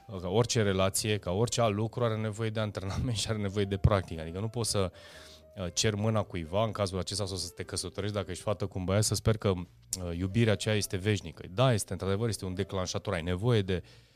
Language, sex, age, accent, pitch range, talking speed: Romanian, male, 30-49, native, 90-110 Hz, 225 wpm